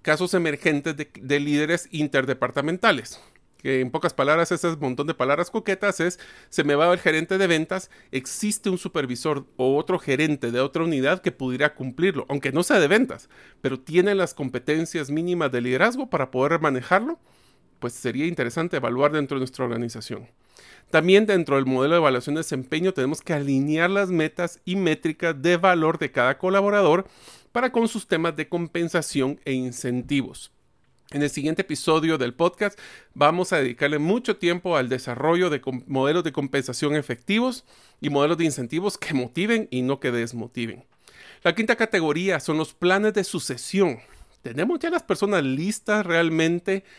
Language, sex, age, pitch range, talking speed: Spanish, male, 40-59, 135-180 Hz, 165 wpm